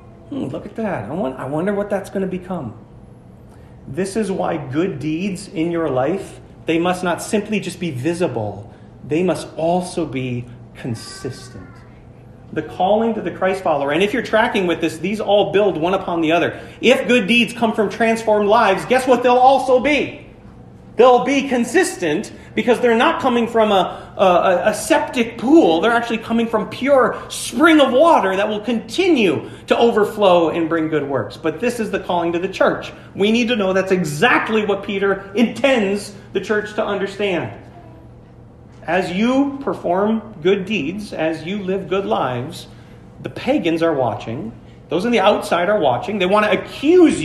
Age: 40-59